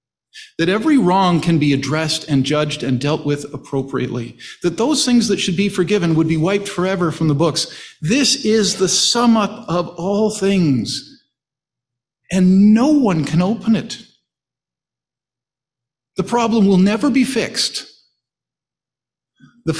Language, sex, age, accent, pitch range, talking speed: English, male, 50-69, American, 135-205 Hz, 140 wpm